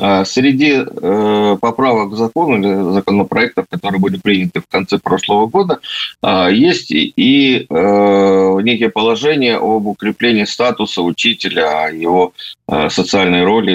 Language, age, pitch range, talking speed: Russian, 50-69, 95-120 Hz, 120 wpm